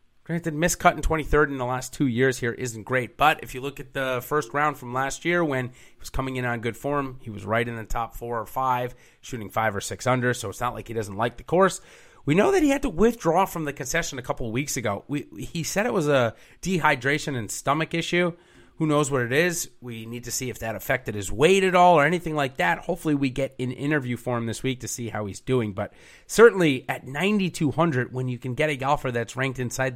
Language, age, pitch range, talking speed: English, 30-49, 115-145 Hz, 250 wpm